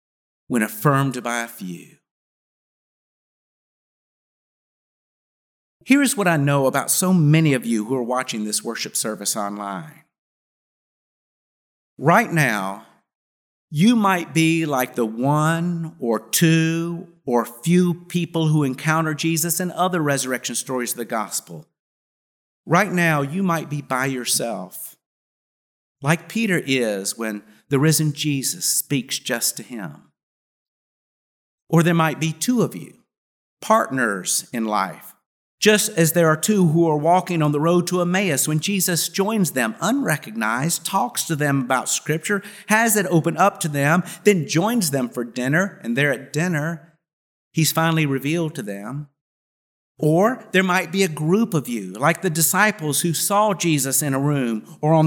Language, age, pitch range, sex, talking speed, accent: English, 50-69, 125-175 Hz, male, 145 wpm, American